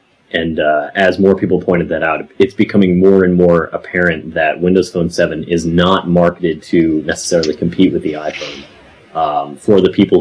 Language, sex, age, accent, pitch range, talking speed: English, male, 30-49, American, 80-95 Hz, 180 wpm